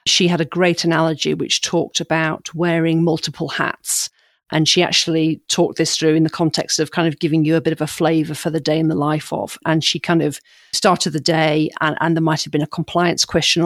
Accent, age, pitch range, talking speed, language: British, 40-59, 155-165 Hz, 235 wpm, English